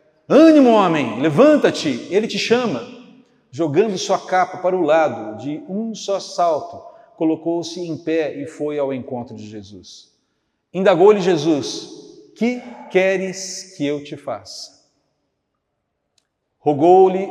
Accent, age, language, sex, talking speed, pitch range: Brazilian, 50-69, Portuguese, male, 120 wpm, 130-185 Hz